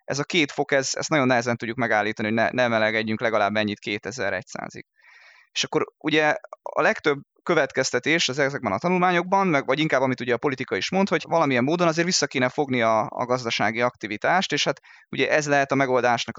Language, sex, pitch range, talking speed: Hungarian, male, 120-160 Hz, 200 wpm